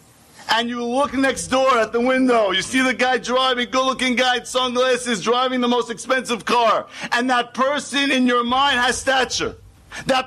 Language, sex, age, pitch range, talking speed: English, male, 50-69, 255-305 Hz, 185 wpm